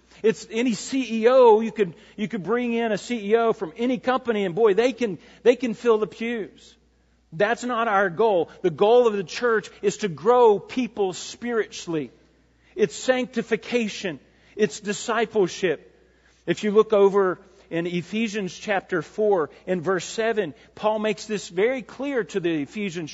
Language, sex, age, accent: English, male, 40-59, American